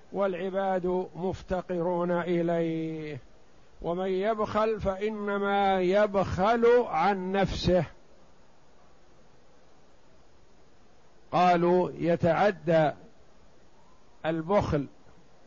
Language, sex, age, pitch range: Arabic, male, 50-69, 170-195 Hz